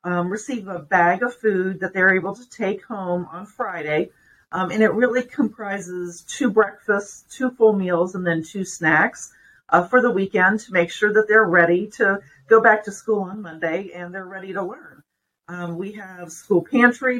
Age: 40-59